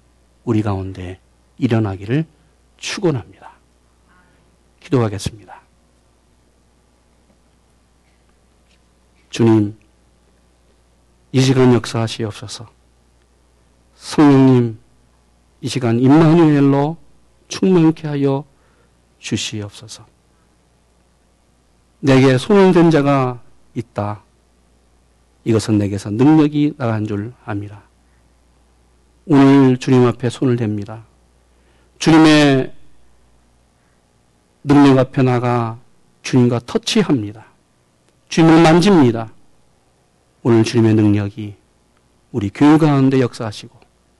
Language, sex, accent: Korean, male, native